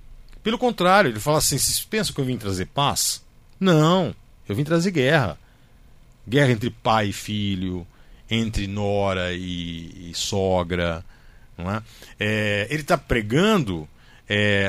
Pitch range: 105-150 Hz